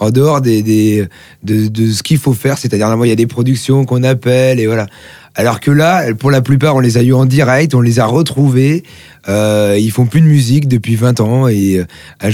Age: 30-49